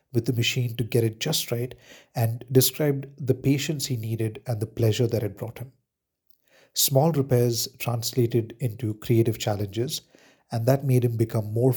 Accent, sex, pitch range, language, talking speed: Indian, male, 110-135 Hz, English, 170 wpm